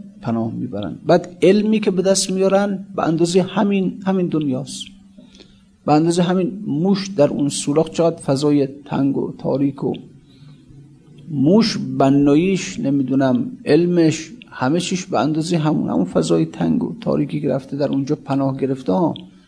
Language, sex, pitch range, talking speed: Persian, male, 130-175 Hz, 130 wpm